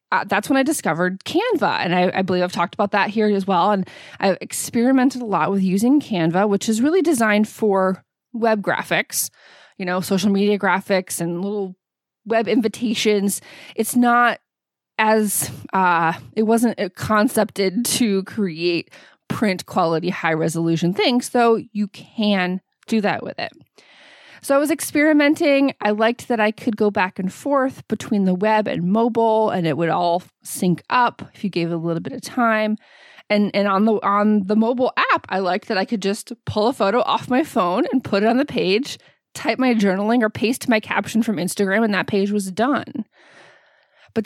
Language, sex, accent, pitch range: English, female, American, 190-235 Hz